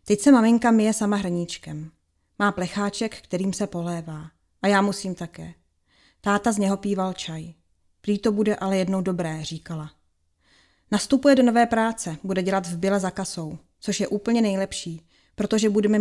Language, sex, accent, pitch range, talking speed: Czech, female, native, 170-215 Hz, 155 wpm